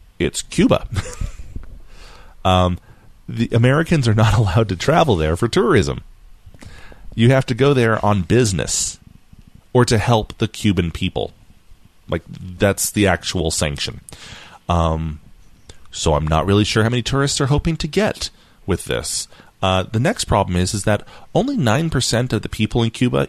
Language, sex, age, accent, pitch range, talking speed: English, male, 30-49, American, 90-125 Hz, 155 wpm